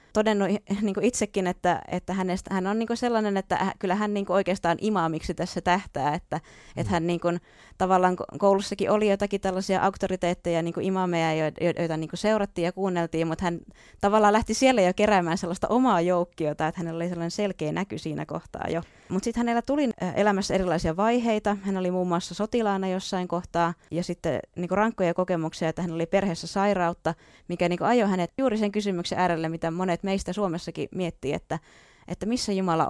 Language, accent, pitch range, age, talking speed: Finnish, native, 170-200 Hz, 20-39, 155 wpm